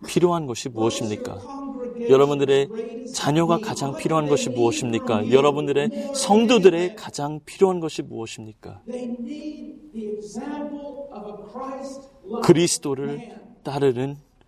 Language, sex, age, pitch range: Korean, male, 30-49, 150-250 Hz